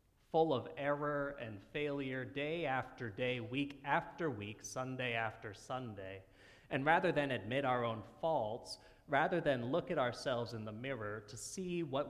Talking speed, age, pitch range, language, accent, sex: 160 wpm, 30-49, 110-140 Hz, English, American, male